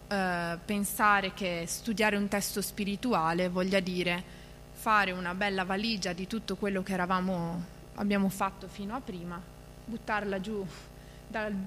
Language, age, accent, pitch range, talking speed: Italian, 20-39, native, 180-220 Hz, 135 wpm